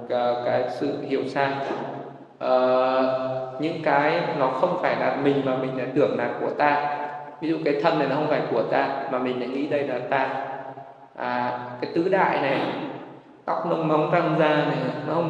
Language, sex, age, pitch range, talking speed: Vietnamese, male, 20-39, 130-155 Hz, 195 wpm